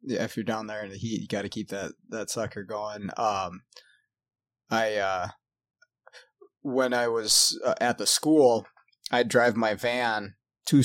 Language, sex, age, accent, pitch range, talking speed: English, male, 20-39, American, 105-130 Hz, 170 wpm